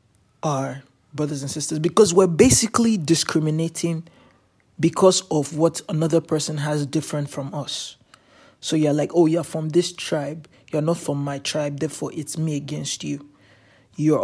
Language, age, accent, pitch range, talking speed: English, 20-39, Nigerian, 145-180 Hz, 150 wpm